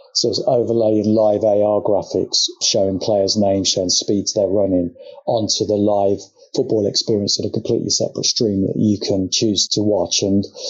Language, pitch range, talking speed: English, 105-130 Hz, 170 wpm